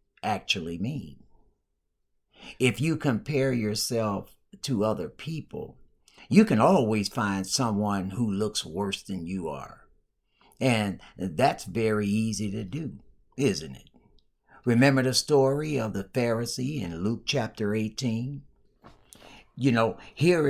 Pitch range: 105-135 Hz